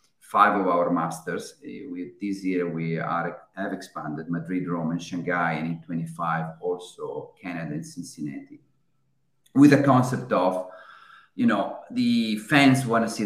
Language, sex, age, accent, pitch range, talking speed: English, male, 40-59, Italian, 90-135 Hz, 150 wpm